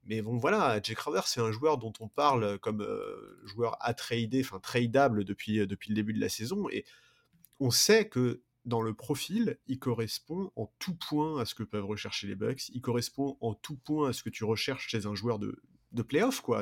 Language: French